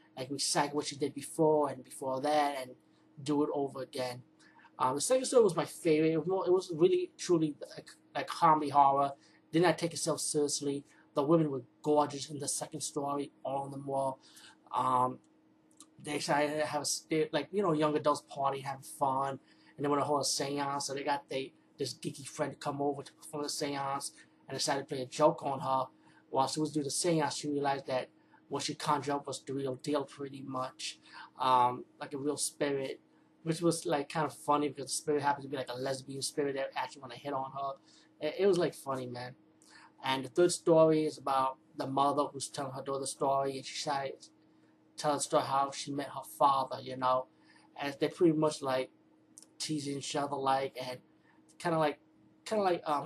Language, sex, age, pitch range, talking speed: English, male, 20-39, 135-150 Hz, 210 wpm